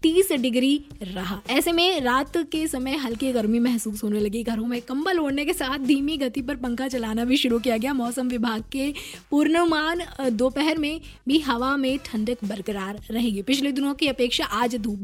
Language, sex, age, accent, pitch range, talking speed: Hindi, female, 20-39, native, 225-285 Hz, 185 wpm